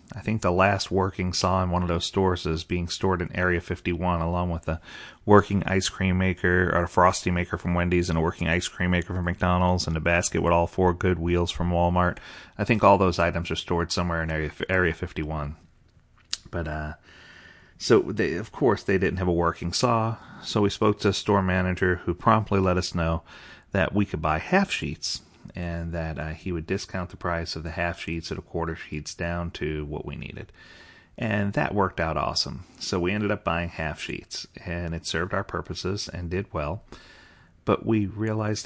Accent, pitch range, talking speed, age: American, 85-100 Hz, 205 wpm, 30-49